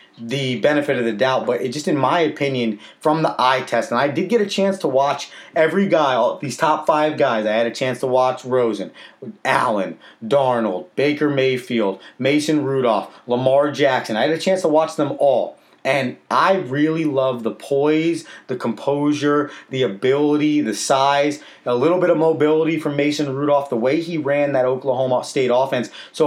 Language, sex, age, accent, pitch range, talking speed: English, male, 30-49, American, 125-160 Hz, 185 wpm